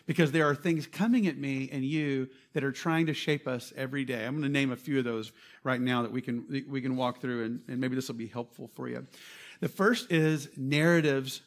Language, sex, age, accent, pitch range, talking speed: English, male, 50-69, American, 125-160 Hz, 240 wpm